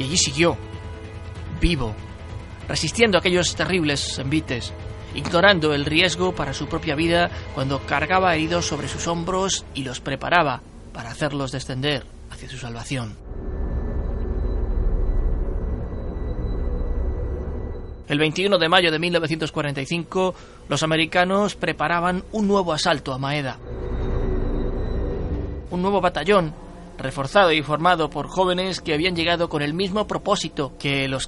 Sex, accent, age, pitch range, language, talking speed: male, Spanish, 20-39, 110-165 Hz, Spanish, 120 wpm